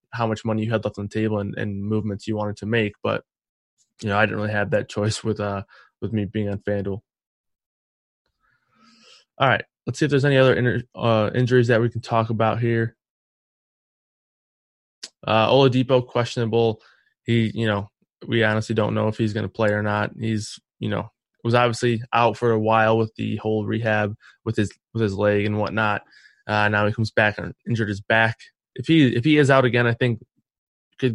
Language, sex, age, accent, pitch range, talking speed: English, male, 20-39, American, 105-120 Hz, 200 wpm